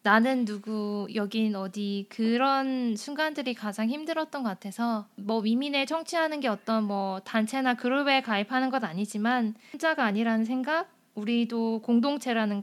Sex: female